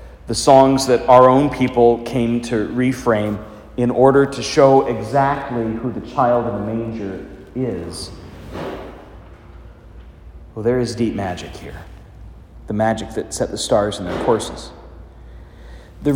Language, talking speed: English, 135 wpm